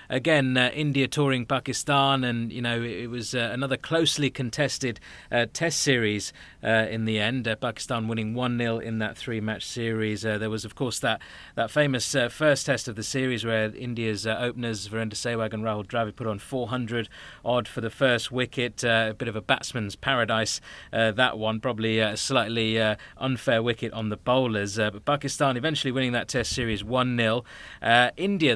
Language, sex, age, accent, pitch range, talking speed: English, male, 30-49, British, 115-135 Hz, 190 wpm